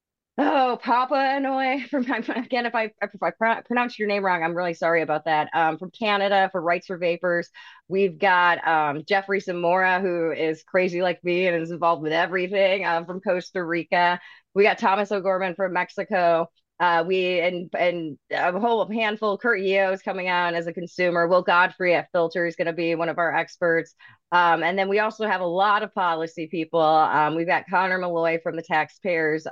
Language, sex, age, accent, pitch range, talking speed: English, female, 30-49, American, 155-190 Hz, 195 wpm